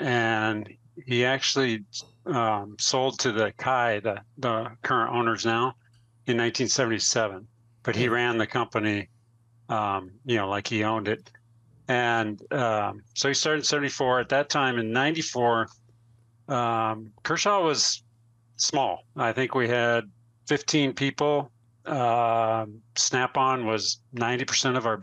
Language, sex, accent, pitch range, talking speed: English, male, American, 115-125 Hz, 130 wpm